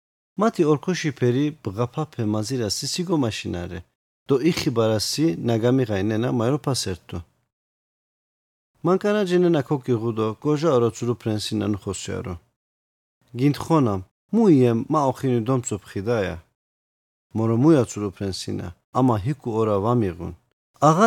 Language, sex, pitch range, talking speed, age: Turkish, male, 100-140 Hz, 65 wpm, 50-69